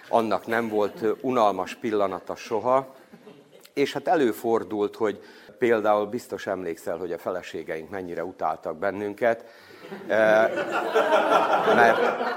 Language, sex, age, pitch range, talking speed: Hungarian, male, 50-69, 105-130 Hz, 95 wpm